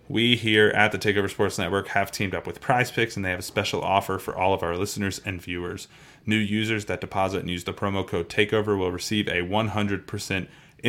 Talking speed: 215 wpm